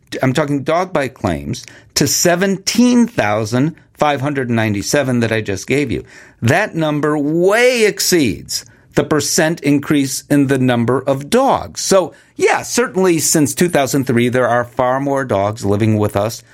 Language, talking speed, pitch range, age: English, 135 wpm, 120-160 Hz, 50-69